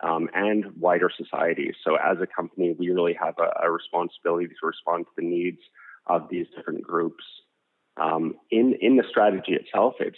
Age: 30-49